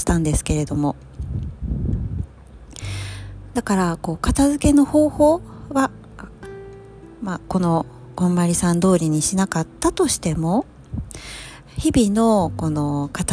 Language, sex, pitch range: Japanese, female, 145-240 Hz